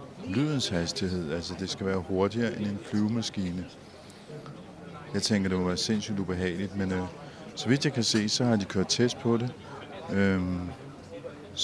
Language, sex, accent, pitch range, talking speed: Danish, male, native, 95-110 Hz, 165 wpm